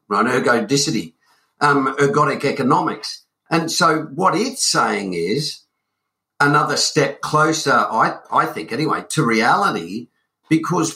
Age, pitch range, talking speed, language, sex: 50-69, 140-175 Hz, 115 wpm, English, male